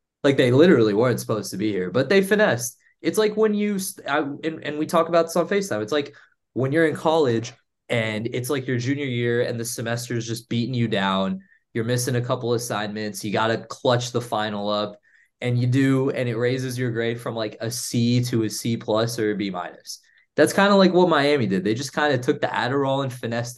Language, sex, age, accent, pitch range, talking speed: English, male, 20-39, American, 110-145 Hz, 230 wpm